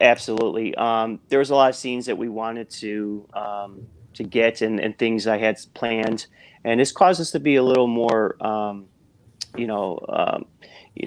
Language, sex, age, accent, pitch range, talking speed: English, male, 30-49, American, 105-120 Hz, 190 wpm